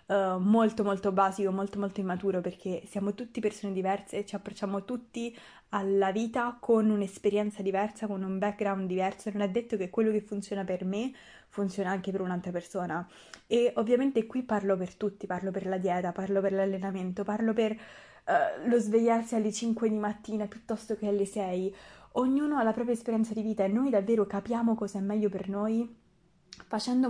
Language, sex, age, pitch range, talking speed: Italian, female, 20-39, 195-230 Hz, 175 wpm